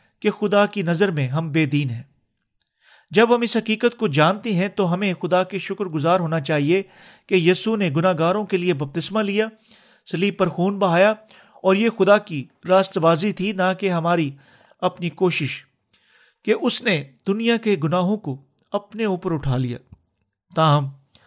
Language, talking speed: Urdu, 170 wpm